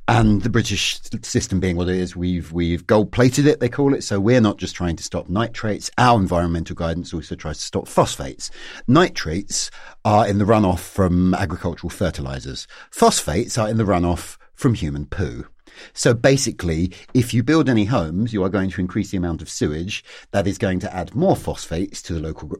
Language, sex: English, male